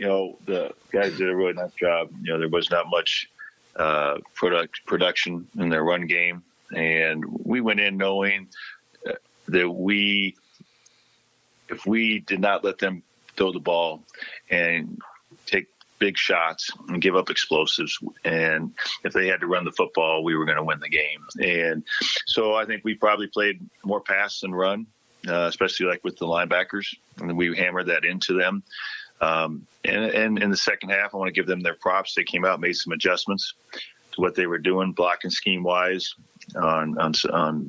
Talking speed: 185 wpm